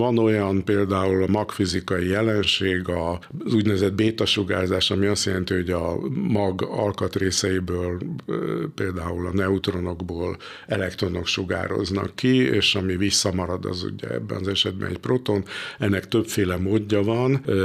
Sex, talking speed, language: male, 125 wpm, Hungarian